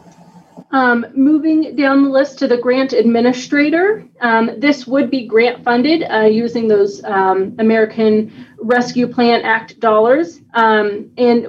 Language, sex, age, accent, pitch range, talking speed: English, female, 30-49, American, 195-255 Hz, 135 wpm